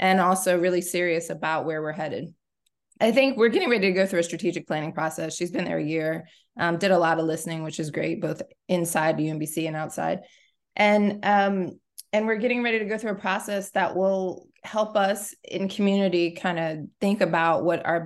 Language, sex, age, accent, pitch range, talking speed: English, female, 20-39, American, 165-185 Hz, 205 wpm